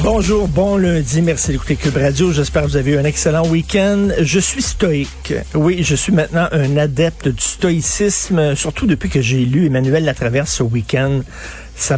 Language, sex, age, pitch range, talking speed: French, male, 50-69, 135-165 Hz, 180 wpm